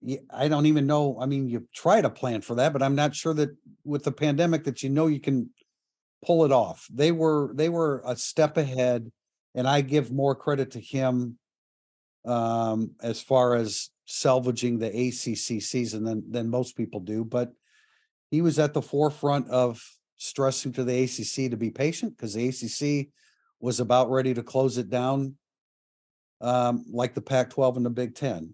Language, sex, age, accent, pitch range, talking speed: English, male, 50-69, American, 120-140 Hz, 185 wpm